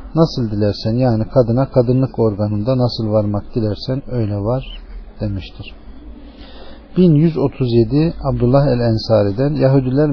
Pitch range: 105-135 Hz